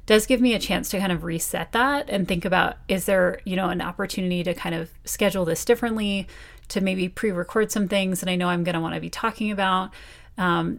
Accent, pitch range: American, 175-205 Hz